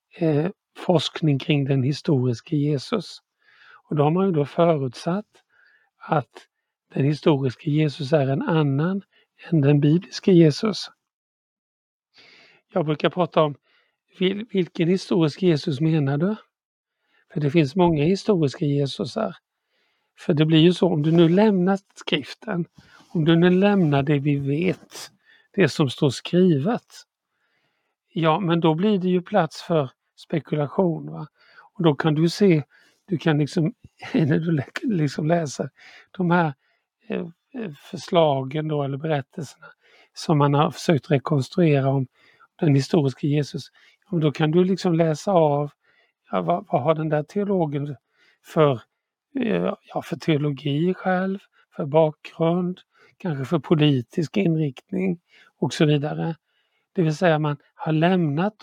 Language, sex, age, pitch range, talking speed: Swedish, male, 50-69, 150-180 Hz, 135 wpm